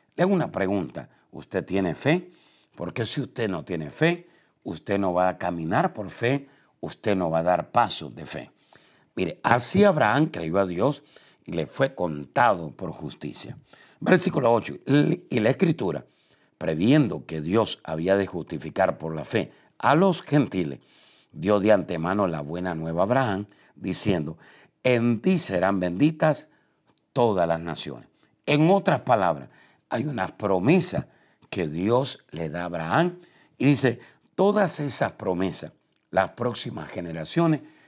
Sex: male